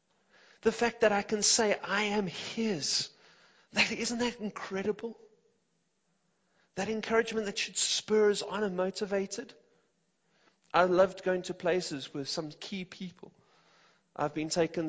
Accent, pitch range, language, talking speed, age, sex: British, 145-200 Hz, English, 135 wpm, 40-59, male